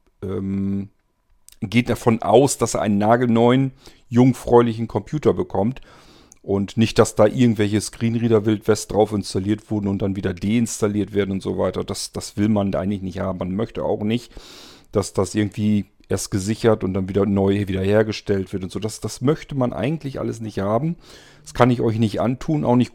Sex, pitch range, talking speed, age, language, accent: male, 100-120 Hz, 180 wpm, 40-59, German, German